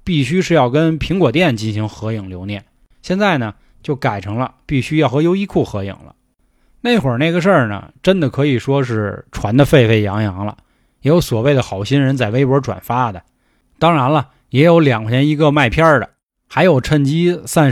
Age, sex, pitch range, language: 20-39, male, 115-165 Hz, Chinese